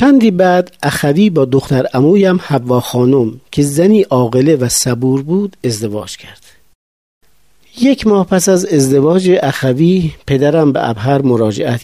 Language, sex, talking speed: Persian, male, 130 wpm